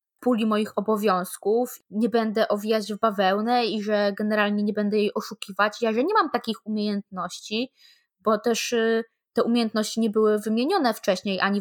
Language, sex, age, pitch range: Polish, female, 20-39, 210-250 Hz